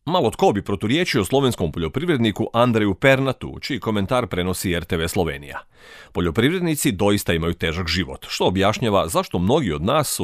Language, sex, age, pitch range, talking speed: Croatian, male, 40-59, 90-125 Hz, 145 wpm